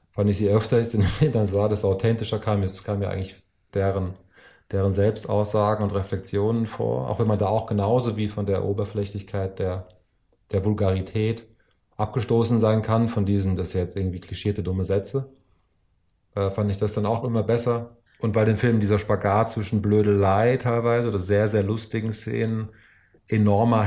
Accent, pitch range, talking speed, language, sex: German, 100-110 Hz, 170 wpm, German, male